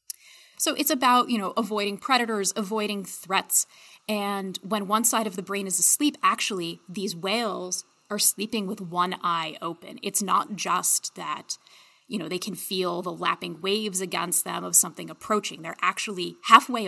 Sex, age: female, 30-49